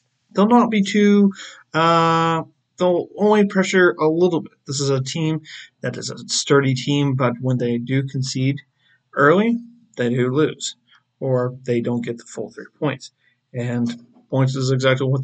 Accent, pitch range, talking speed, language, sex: American, 125-150 Hz, 165 wpm, English, male